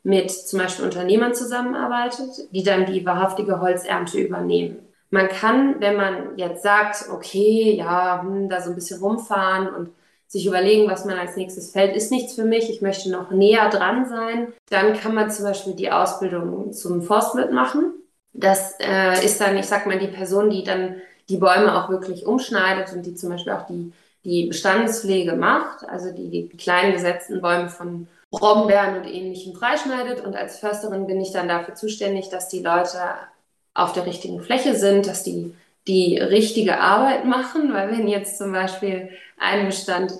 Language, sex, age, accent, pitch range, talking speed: German, female, 20-39, German, 185-220 Hz, 175 wpm